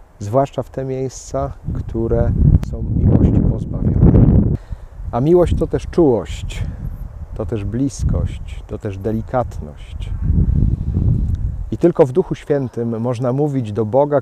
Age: 40-59